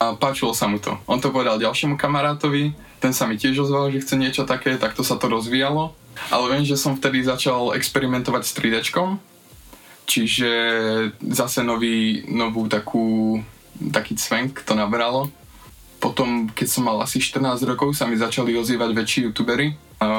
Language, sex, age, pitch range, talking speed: Slovak, male, 20-39, 110-135 Hz, 165 wpm